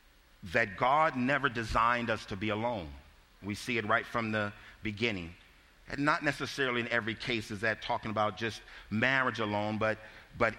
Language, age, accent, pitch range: English, 50-69, American, 95-130 Hz